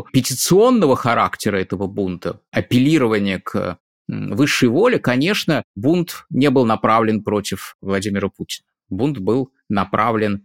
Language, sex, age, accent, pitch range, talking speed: Russian, male, 20-39, native, 95-125 Hz, 110 wpm